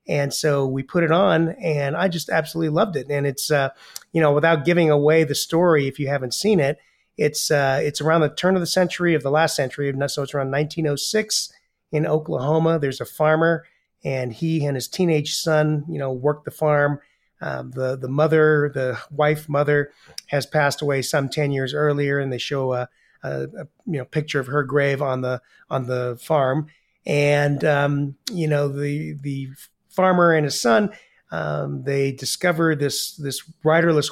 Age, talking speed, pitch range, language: 30-49, 190 wpm, 135-155 Hz, English